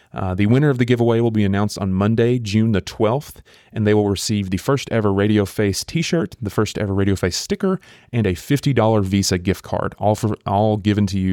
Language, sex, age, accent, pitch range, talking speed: English, male, 30-49, American, 95-110 Hz, 220 wpm